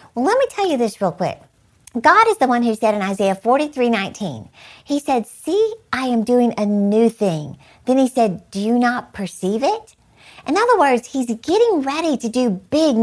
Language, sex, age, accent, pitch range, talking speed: English, female, 50-69, American, 210-285 Hz, 200 wpm